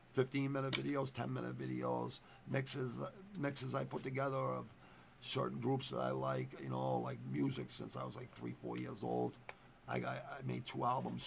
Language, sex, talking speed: English, male, 175 wpm